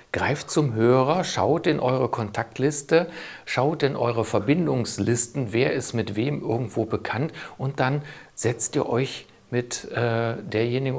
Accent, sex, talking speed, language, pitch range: German, male, 135 wpm, German, 110-150 Hz